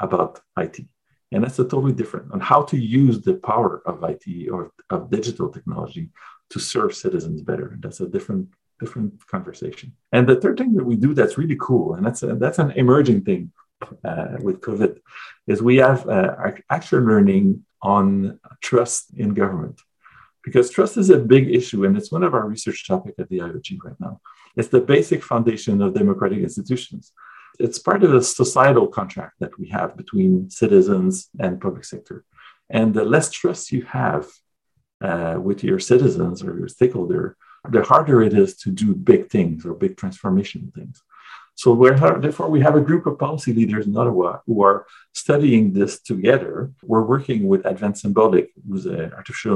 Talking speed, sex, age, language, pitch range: 180 wpm, male, 50-69, English, 115-190 Hz